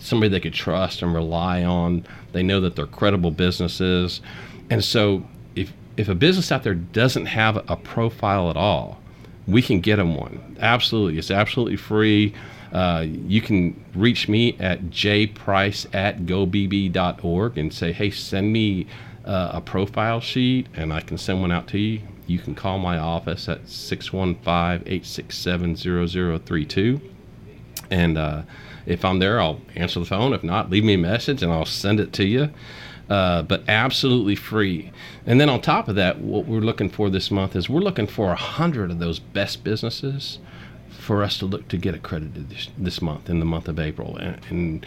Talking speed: 175 wpm